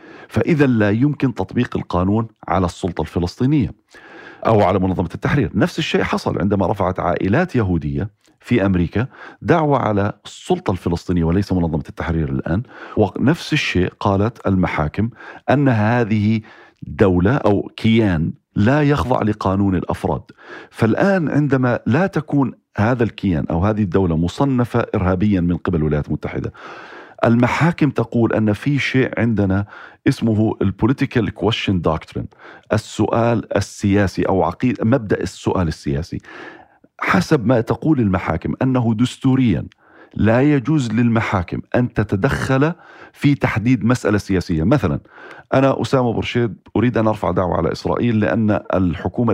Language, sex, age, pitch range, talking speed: Arabic, male, 40-59, 95-125 Hz, 125 wpm